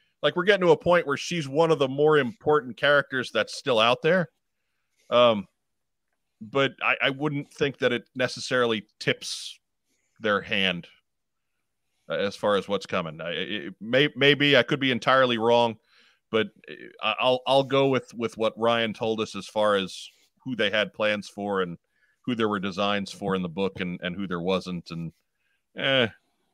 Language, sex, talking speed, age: English, male, 180 wpm, 40-59